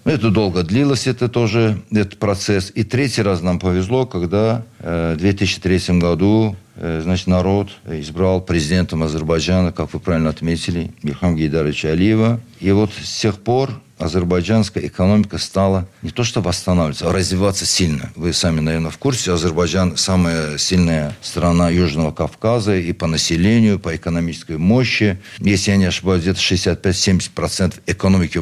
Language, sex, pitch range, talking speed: Russian, male, 85-105 Hz, 145 wpm